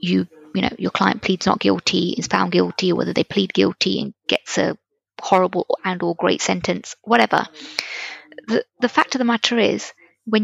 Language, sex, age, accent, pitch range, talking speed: English, female, 20-39, British, 170-240 Hz, 185 wpm